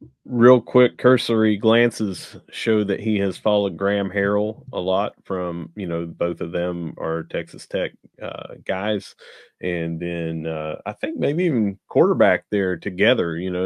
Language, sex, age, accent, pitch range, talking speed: English, male, 30-49, American, 90-110 Hz, 160 wpm